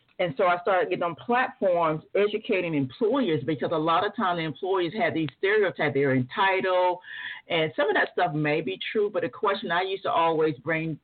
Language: English